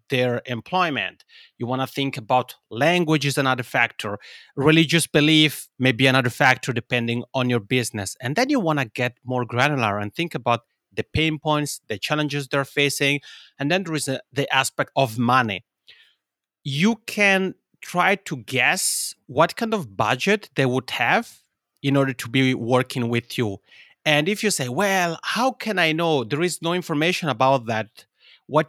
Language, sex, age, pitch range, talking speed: English, male, 30-49, 125-165 Hz, 170 wpm